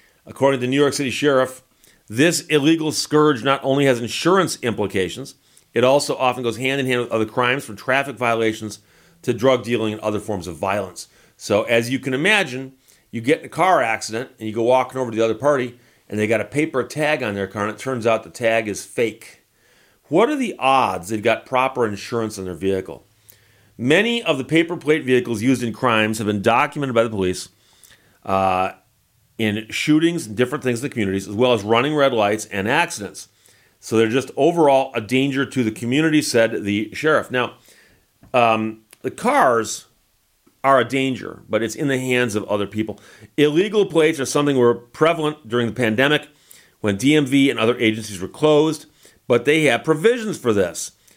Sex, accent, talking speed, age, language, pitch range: male, American, 195 wpm, 40-59, English, 110-145 Hz